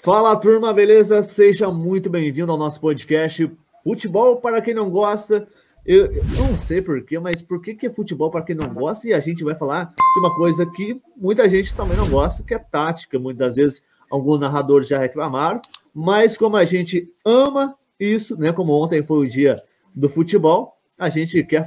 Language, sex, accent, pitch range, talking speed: Portuguese, male, Brazilian, 150-200 Hz, 190 wpm